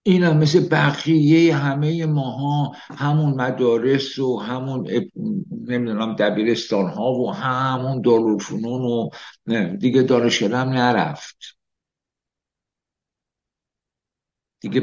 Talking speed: 90 wpm